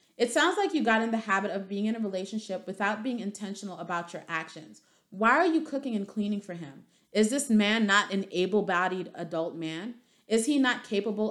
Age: 30-49